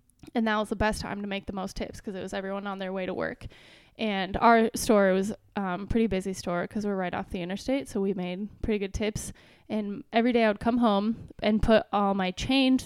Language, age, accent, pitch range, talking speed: English, 10-29, American, 190-215 Hz, 245 wpm